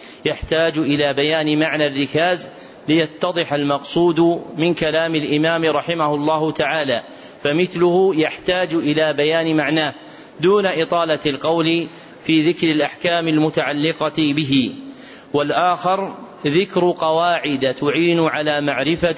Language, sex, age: Arabic, male, 40-59